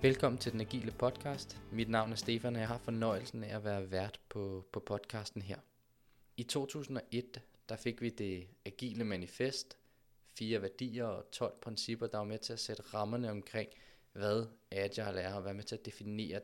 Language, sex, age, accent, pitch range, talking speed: Danish, male, 20-39, native, 100-120 Hz, 185 wpm